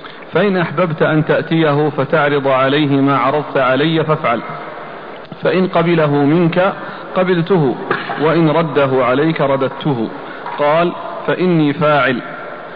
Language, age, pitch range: Arabic, 40-59, 145-165 Hz